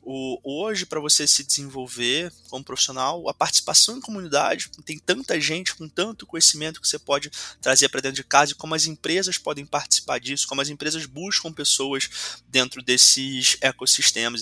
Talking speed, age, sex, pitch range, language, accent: 165 wpm, 20-39, male, 125-150 Hz, Portuguese, Brazilian